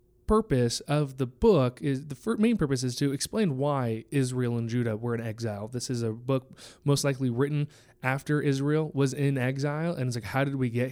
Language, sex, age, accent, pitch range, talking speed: English, male, 20-39, American, 125-150 Hz, 205 wpm